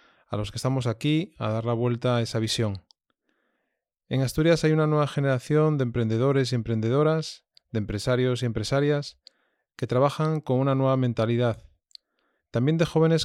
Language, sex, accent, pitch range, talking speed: Spanish, male, Spanish, 110-135 Hz, 160 wpm